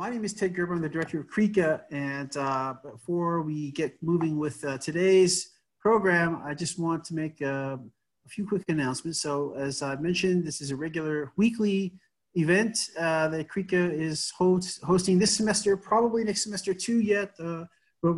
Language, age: English, 30-49